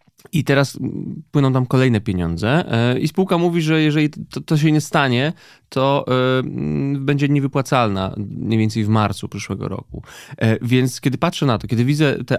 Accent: native